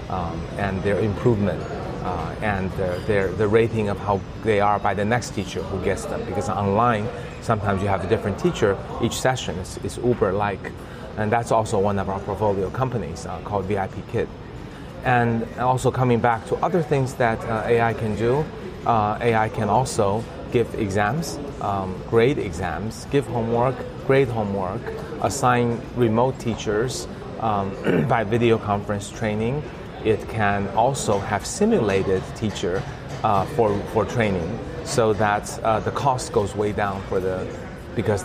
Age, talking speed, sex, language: 30-49, 155 wpm, male, English